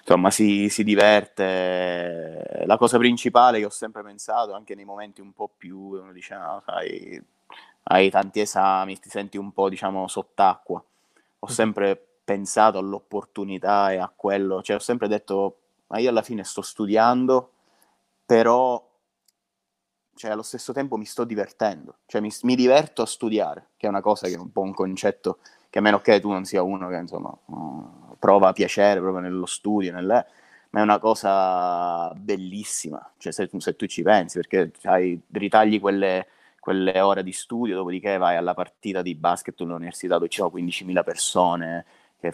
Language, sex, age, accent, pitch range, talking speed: Italian, male, 20-39, native, 95-105 Hz, 165 wpm